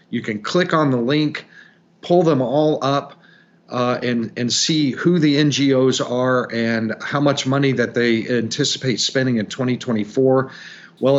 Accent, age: American, 50-69